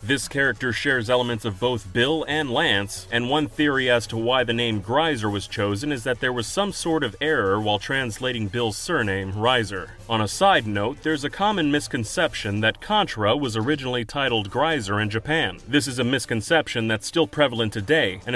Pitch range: 110-135 Hz